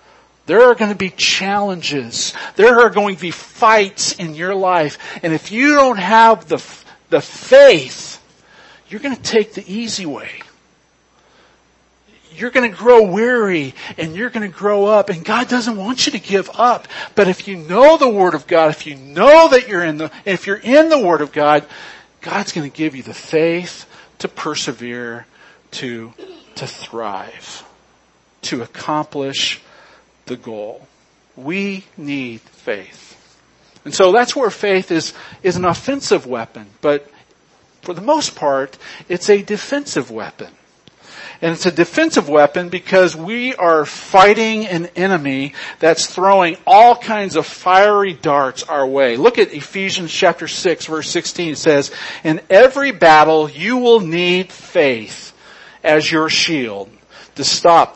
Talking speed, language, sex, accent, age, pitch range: 155 wpm, English, male, American, 50-69, 155-215 Hz